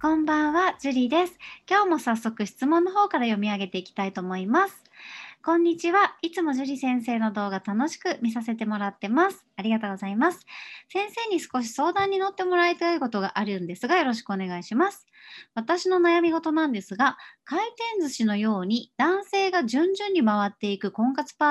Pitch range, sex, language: 220-345 Hz, male, Japanese